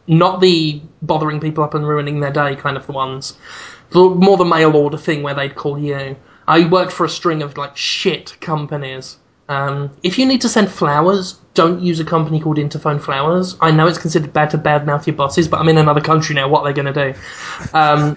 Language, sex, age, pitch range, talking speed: English, male, 20-39, 145-175 Hz, 210 wpm